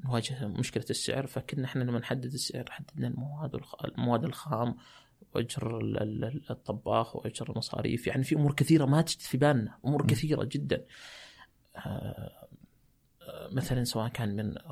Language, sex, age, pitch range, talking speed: Arabic, male, 30-49, 115-145 Hz, 120 wpm